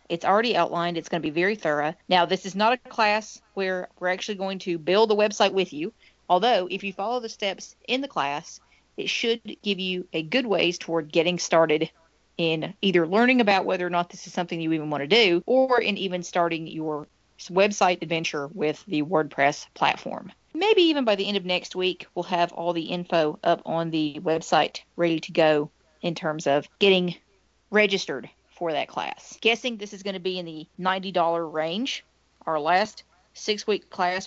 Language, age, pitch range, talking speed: English, 40-59, 170-205 Hz, 200 wpm